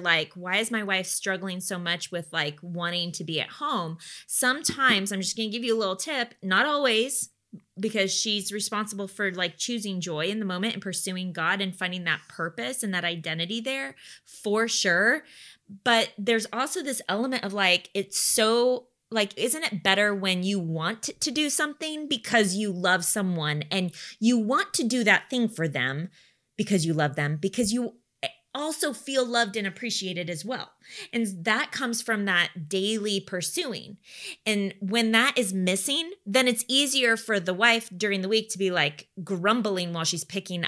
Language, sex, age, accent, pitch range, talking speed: English, female, 20-39, American, 180-235 Hz, 180 wpm